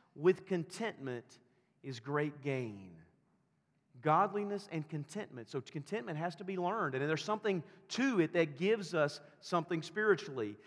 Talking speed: 135 wpm